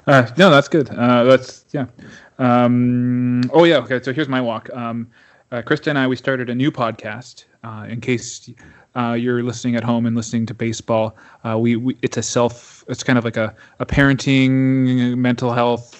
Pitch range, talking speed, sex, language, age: 115-130 Hz, 195 wpm, male, English, 20-39